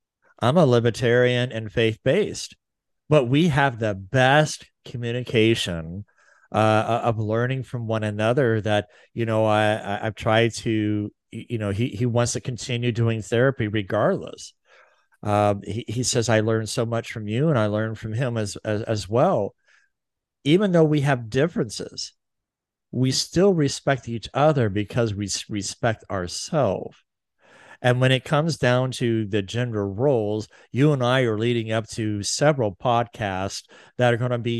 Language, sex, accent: English, male, American